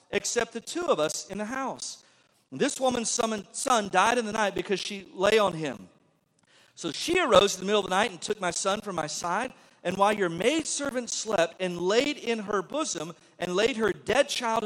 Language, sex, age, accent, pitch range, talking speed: English, male, 50-69, American, 200-270 Hz, 215 wpm